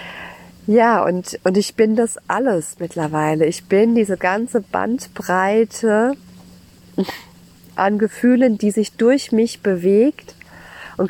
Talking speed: 115 wpm